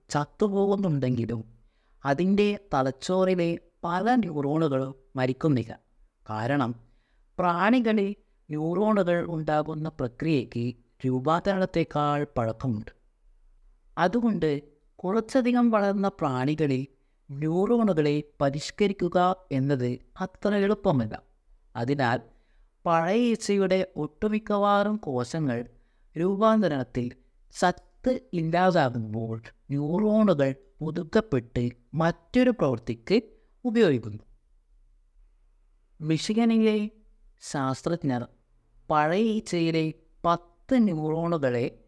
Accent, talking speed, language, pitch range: native, 60 wpm, Malayalam, 130-195 Hz